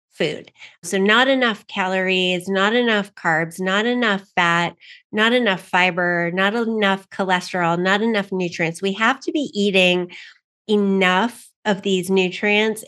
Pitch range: 170-210 Hz